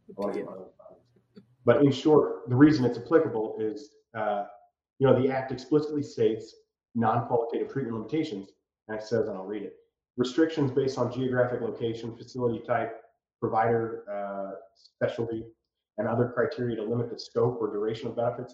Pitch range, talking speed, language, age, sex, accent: 110-130 Hz, 150 wpm, English, 30-49, male, American